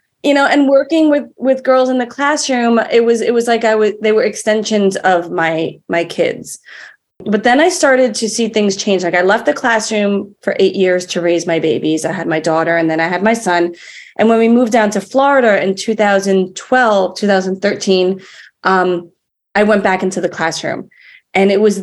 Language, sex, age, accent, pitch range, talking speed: English, female, 30-49, American, 175-245 Hz, 205 wpm